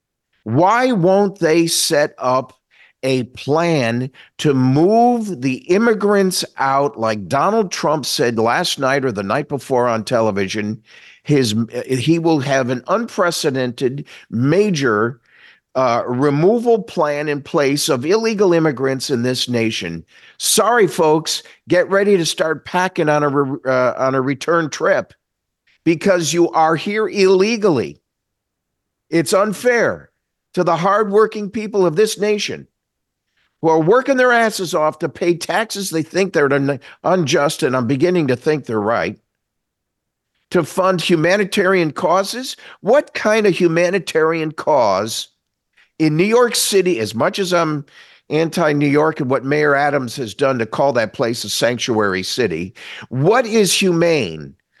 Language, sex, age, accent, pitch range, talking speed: English, male, 50-69, American, 135-190 Hz, 135 wpm